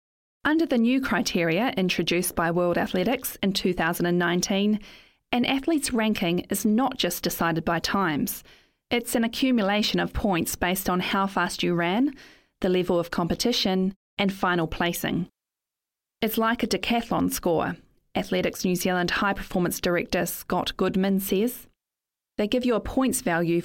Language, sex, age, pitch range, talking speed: English, female, 30-49, 180-230 Hz, 145 wpm